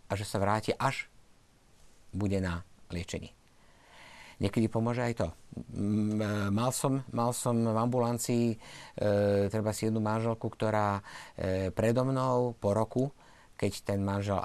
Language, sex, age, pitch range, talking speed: Slovak, male, 50-69, 95-120 Hz, 135 wpm